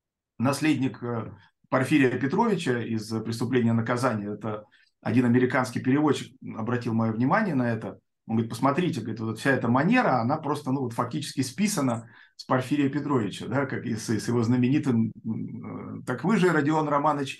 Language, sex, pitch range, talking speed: Russian, male, 120-150 Hz, 145 wpm